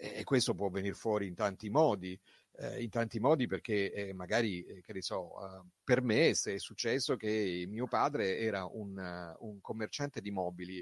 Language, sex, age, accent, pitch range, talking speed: Italian, male, 40-59, native, 95-130 Hz, 170 wpm